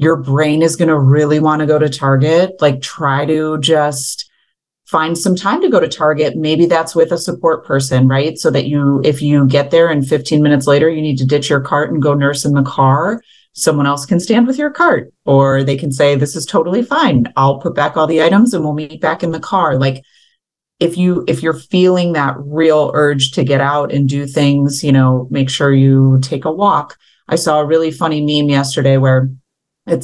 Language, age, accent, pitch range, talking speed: English, 30-49, American, 135-160 Hz, 225 wpm